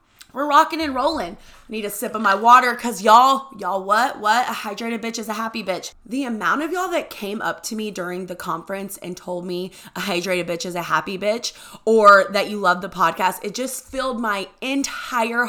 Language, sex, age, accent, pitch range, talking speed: English, female, 20-39, American, 200-260 Hz, 215 wpm